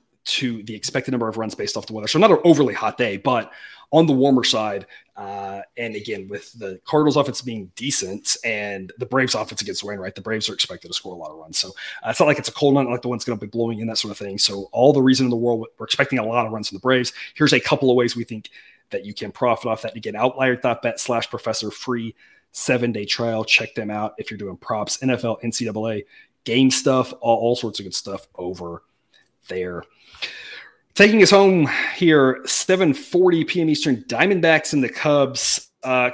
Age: 30-49